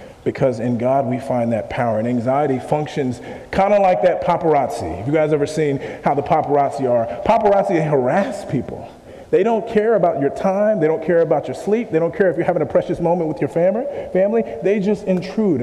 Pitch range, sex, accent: 125-160 Hz, male, American